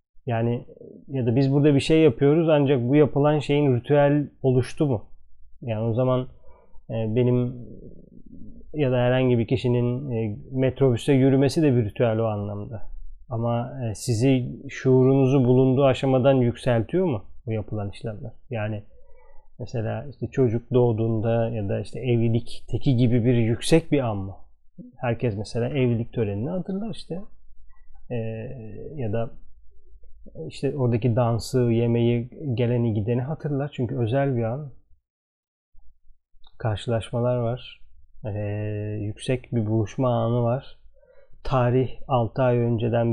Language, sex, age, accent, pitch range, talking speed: Turkish, male, 30-49, native, 110-135 Hz, 130 wpm